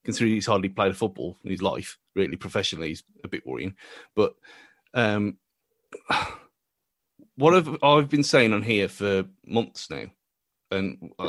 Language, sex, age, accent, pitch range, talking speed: English, male, 30-49, British, 105-140 Hz, 145 wpm